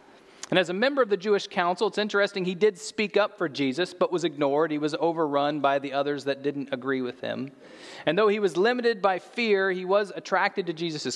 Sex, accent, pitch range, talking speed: male, American, 155-210 Hz, 225 wpm